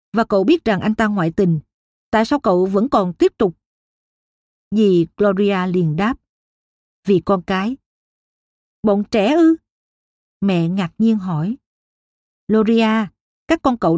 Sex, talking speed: female, 140 wpm